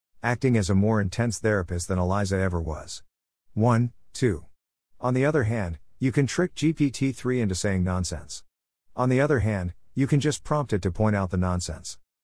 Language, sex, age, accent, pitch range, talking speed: English, male, 50-69, American, 90-115 Hz, 180 wpm